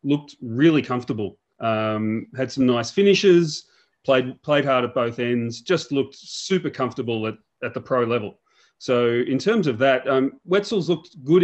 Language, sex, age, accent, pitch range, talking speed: English, male, 30-49, Australian, 115-140 Hz, 170 wpm